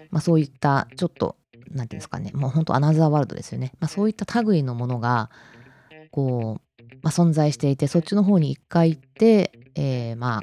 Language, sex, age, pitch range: Japanese, female, 20-39, 125-160 Hz